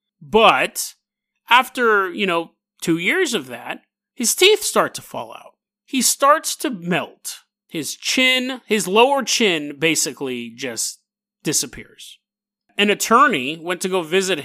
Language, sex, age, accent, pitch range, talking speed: English, male, 30-49, American, 150-220 Hz, 135 wpm